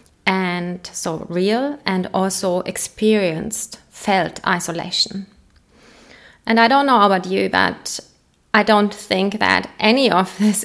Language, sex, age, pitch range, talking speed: English, female, 30-49, 185-210 Hz, 125 wpm